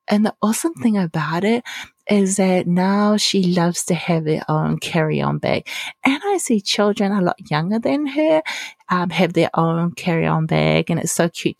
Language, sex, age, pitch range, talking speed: English, female, 30-49, 155-205 Hz, 185 wpm